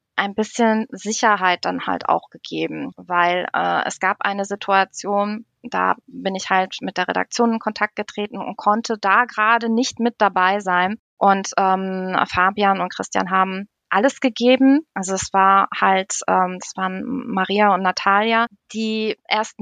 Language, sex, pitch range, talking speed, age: German, female, 180-215 Hz, 155 wpm, 20-39